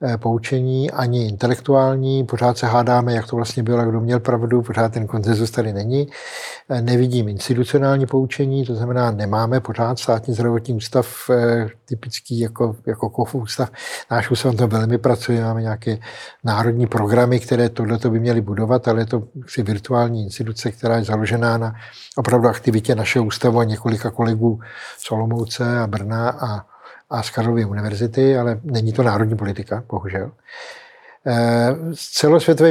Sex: male